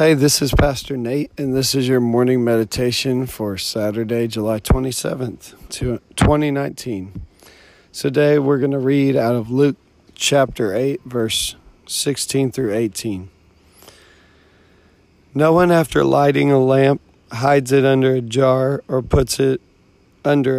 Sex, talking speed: male, 130 wpm